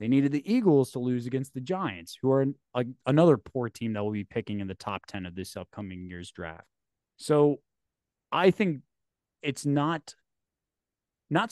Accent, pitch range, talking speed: American, 105-140 Hz, 170 wpm